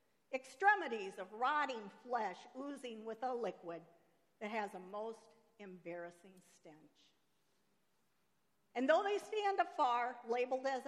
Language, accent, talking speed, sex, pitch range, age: English, American, 115 wpm, female, 200-285 Hz, 50-69